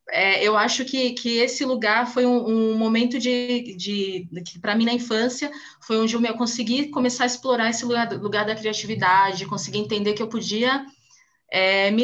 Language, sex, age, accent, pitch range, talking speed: Portuguese, female, 20-39, Brazilian, 210-250 Hz, 185 wpm